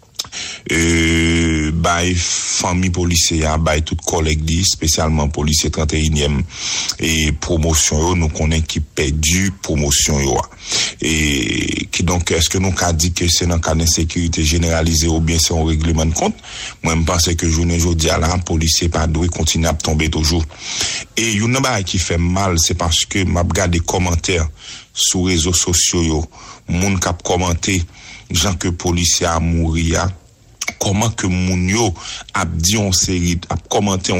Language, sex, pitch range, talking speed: English, male, 80-100 Hz, 160 wpm